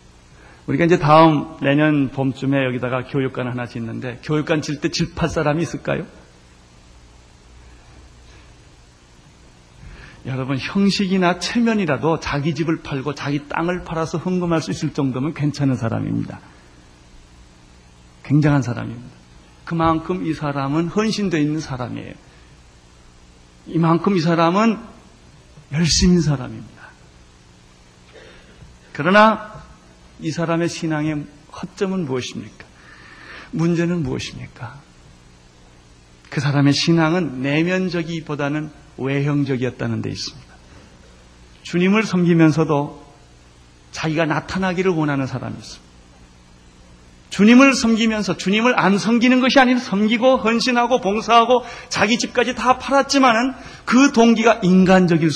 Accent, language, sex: native, Korean, male